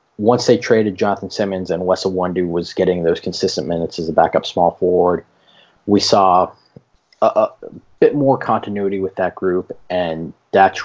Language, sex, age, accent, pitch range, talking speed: English, male, 20-39, American, 90-100 Hz, 165 wpm